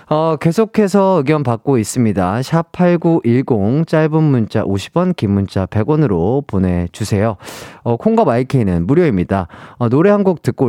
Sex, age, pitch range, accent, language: male, 40-59, 105-170 Hz, native, Korean